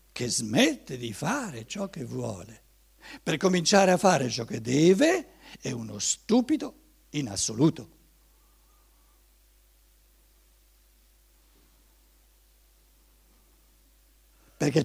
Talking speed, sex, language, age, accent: 80 wpm, male, Italian, 60-79, native